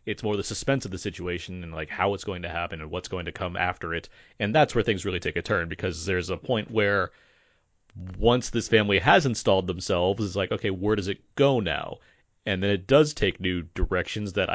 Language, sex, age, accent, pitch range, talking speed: English, male, 30-49, American, 90-110 Hz, 230 wpm